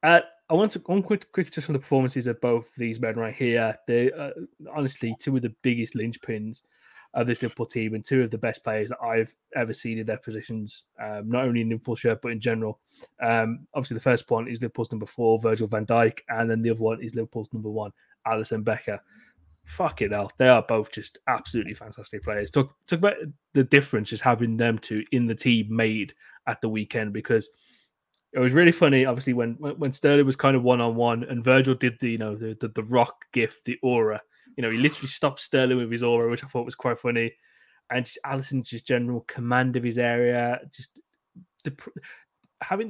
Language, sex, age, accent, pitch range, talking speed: English, male, 20-39, British, 115-135 Hz, 215 wpm